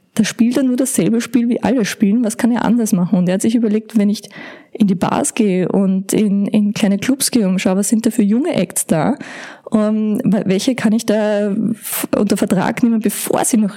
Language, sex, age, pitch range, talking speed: German, female, 20-39, 205-235 Hz, 220 wpm